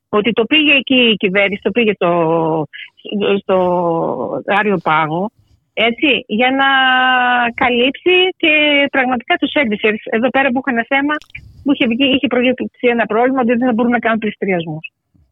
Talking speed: 155 wpm